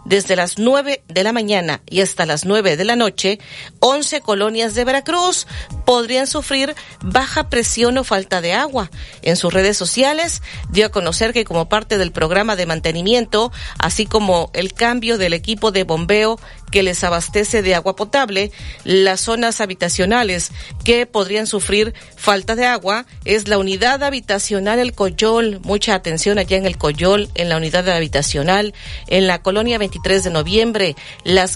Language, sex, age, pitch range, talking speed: Spanish, female, 40-59, 185-235 Hz, 165 wpm